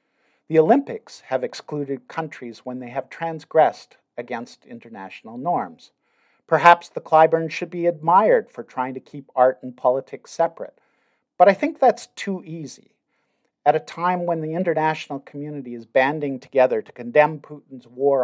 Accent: American